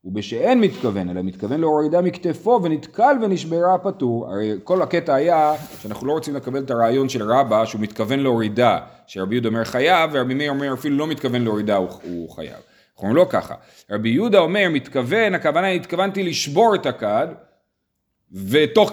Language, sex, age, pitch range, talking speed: Hebrew, male, 40-59, 115-165 Hz, 165 wpm